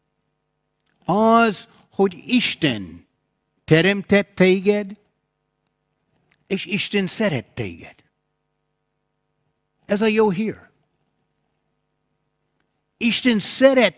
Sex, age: male, 60-79